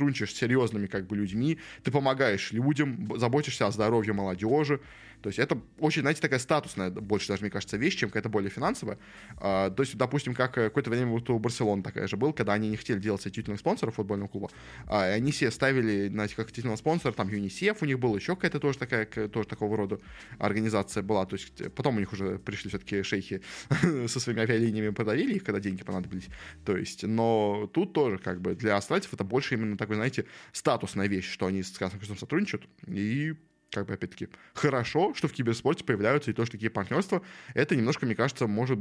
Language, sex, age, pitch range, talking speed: Russian, male, 20-39, 100-130 Hz, 200 wpm